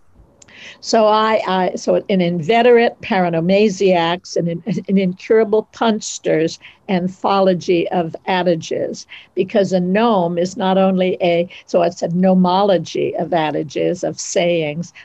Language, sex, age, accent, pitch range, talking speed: English, female, 60-79, American, 175-215 Hz, 120 wpm